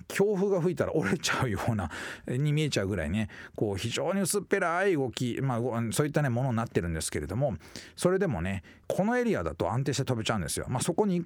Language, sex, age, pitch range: Japanese, male, 40-59, 100-160 Hz